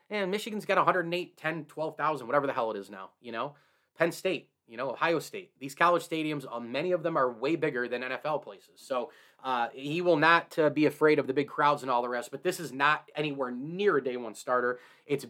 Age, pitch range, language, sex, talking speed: 30-49, 135-170 Hz, English, male, 230 wpm